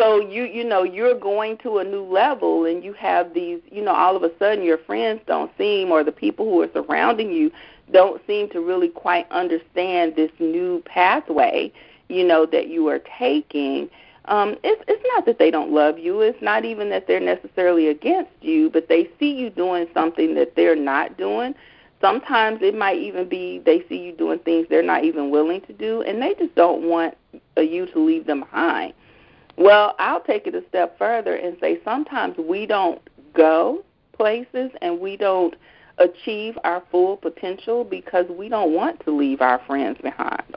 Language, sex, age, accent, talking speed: English, female, 40-59, American, 190 wpm